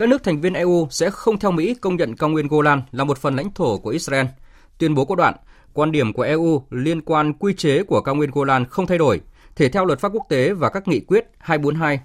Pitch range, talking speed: 130-175 Hz, 255 wpm